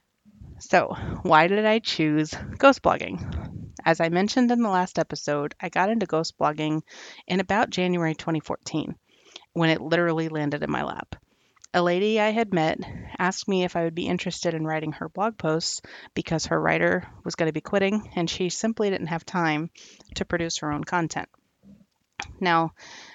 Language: English